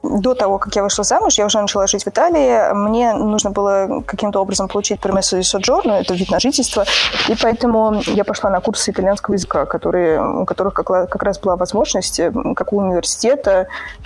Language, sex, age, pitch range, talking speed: Russian, female, 20-39, 190-230 Hz, 180 wpm